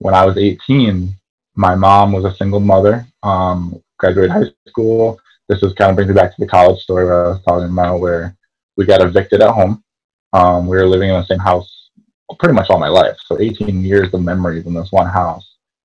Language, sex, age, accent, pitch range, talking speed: English, male, 20-39, American, 90-100 Hz, 220 wpm